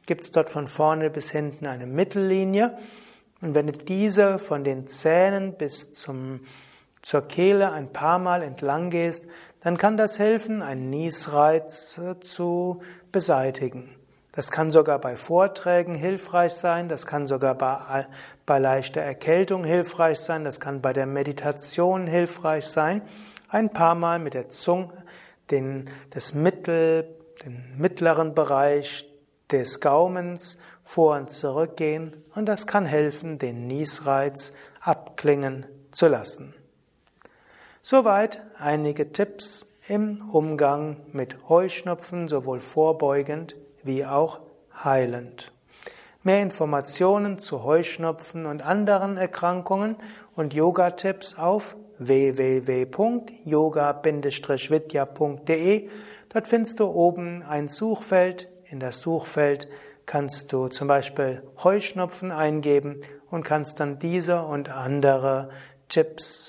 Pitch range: 140-180 Hz